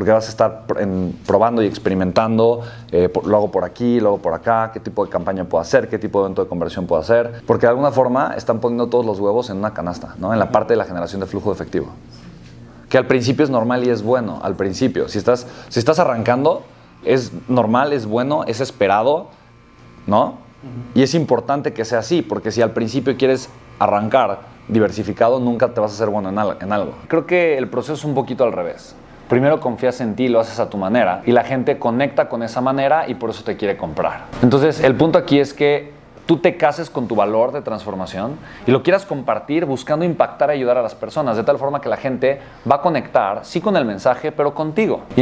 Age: 30-49